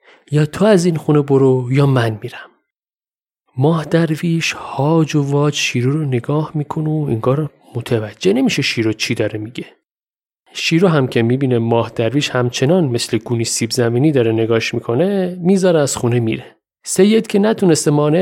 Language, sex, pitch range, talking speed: Persian, male, 125-175 Hz, 160 wpm